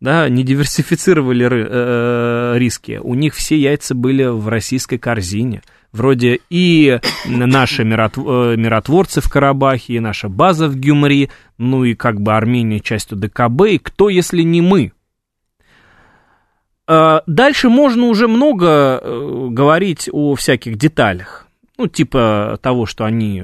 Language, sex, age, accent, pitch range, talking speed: Russian, male, 20-39, native, 110-160 Hz, 130 wpm